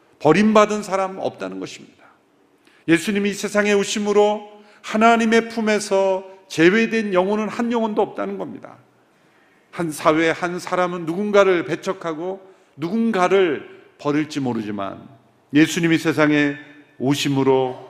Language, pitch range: Korean, 140-200 Hz